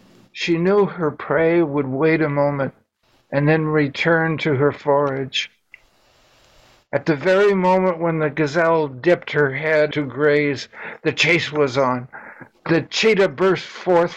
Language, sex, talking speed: English, male, 145 wpm